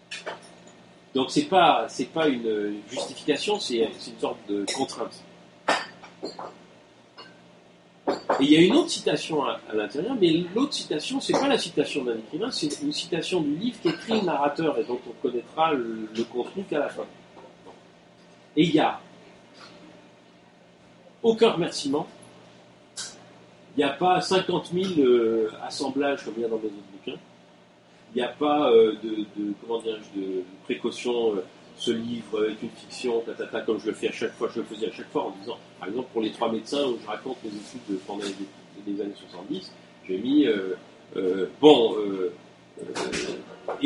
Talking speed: 180 wpm